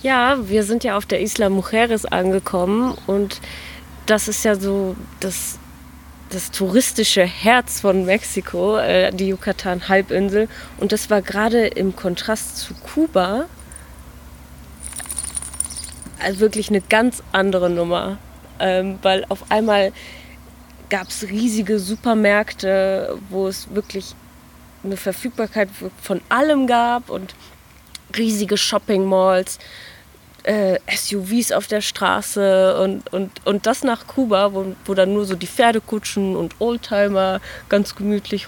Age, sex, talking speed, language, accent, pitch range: 20-39, female, 115 wpm, German, German, 185-215 Hz